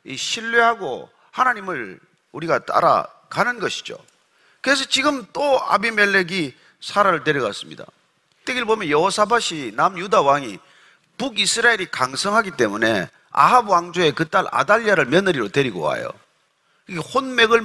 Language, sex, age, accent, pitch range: Korean, male, 40-59, native, 180-250 Hz